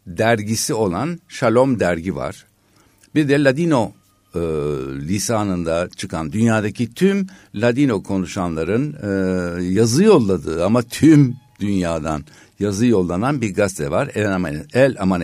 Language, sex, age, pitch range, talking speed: Turkish, male, 60-79, 95-130 Hz, 120 wpm